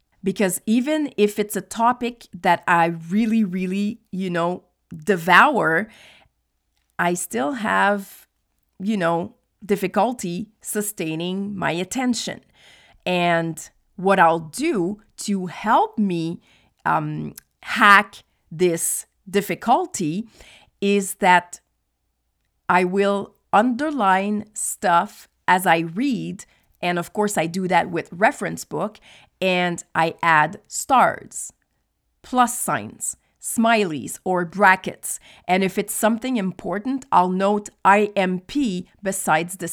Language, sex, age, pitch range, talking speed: English, female, 40-59, 180-220 Hz, 105 wpm